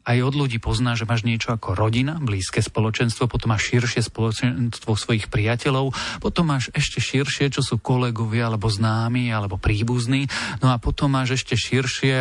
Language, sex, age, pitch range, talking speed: Slovak, male, 40-59, 110-130 Hz, 165 wpm